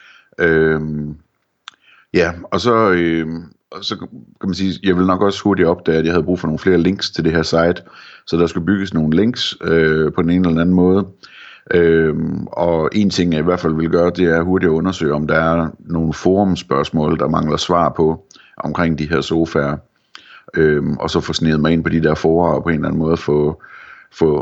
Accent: native